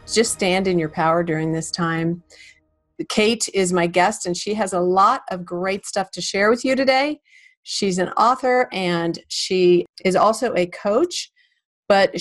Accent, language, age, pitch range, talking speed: American, English, 40-59, 180-240 Hz, 170 wpm